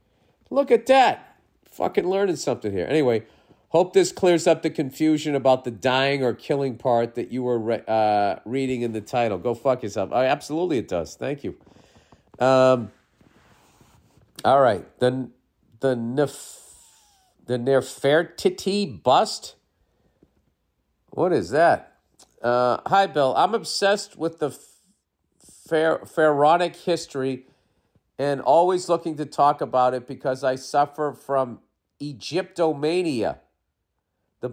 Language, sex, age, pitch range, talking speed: English, male, 50-69, 120-160 Hz, 130 wpm